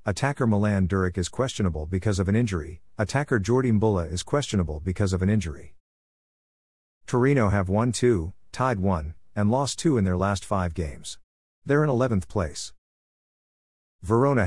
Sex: male